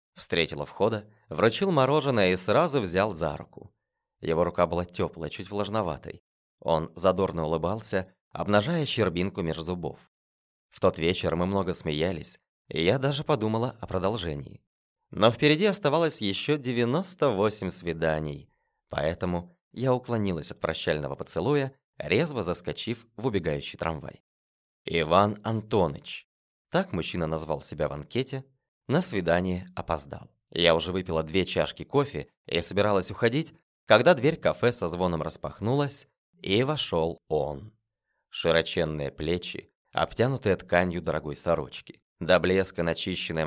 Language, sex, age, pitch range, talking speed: Russian, male, 20-39, 80-115 Hz, 125 wpm